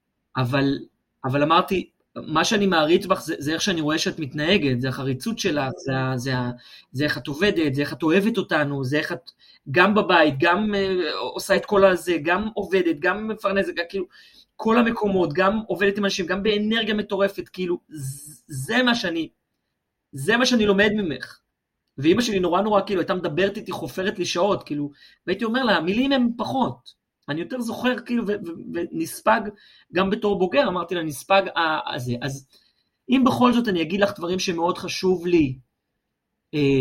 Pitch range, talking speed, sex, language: 150-205 Hz, 175 wpm, male, Hebrew